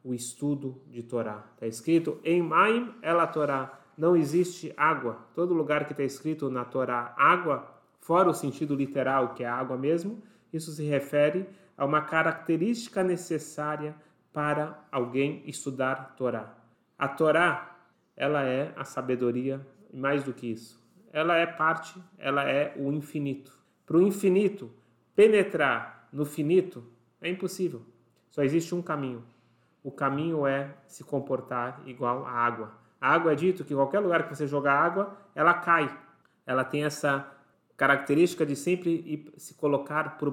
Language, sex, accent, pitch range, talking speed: Portuguese, male, Brazilian, 130-165 Hz, 150 wpm